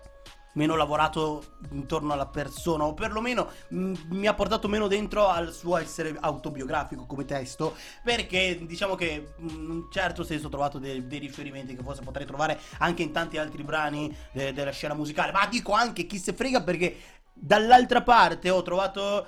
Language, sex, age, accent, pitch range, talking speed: Italian, male, 30-49, native, 150-200 Hz, 170 wpm